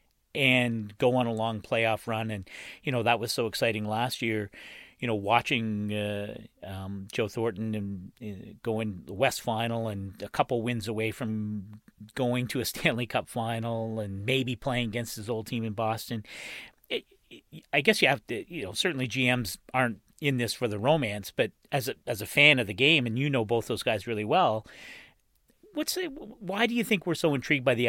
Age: 40-59